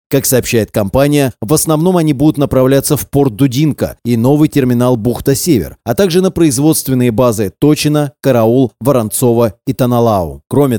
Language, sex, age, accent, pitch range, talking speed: Russian, male, 30-49, native, 120-155 Hz, 150 wpm